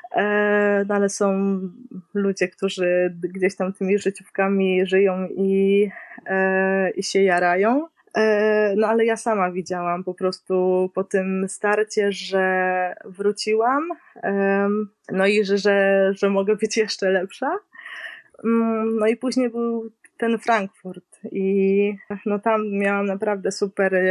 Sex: female